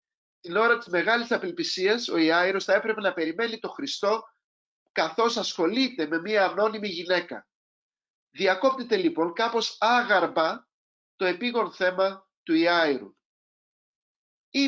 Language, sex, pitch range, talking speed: Greek, male, 175-230 Hz, 120 wpm